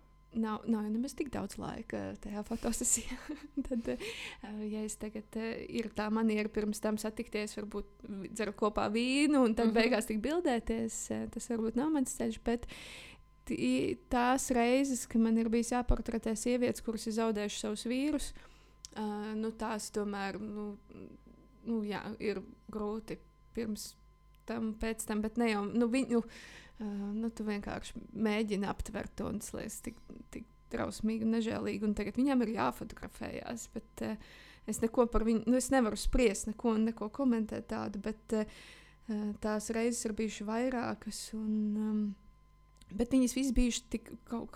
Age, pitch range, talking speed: 20-39, 215-240 Hz, 155 wpm